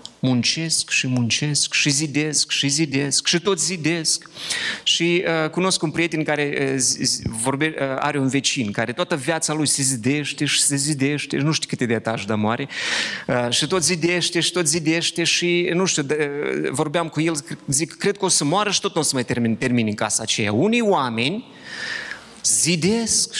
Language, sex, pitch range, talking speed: Romanian, male, 120-165 Hz, 190 wpm